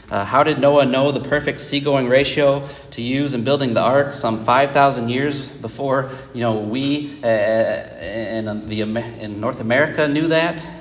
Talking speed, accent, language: 160 wpm, American, English